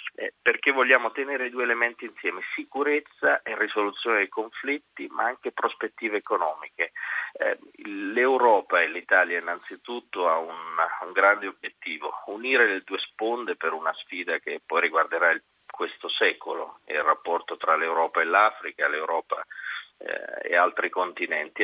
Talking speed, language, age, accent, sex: 140 wpm, Italian, 40-59, native, male